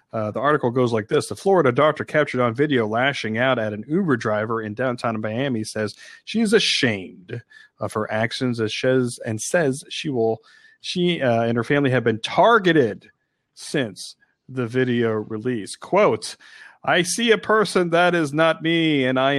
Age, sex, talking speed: 40-59, male, 175 wpm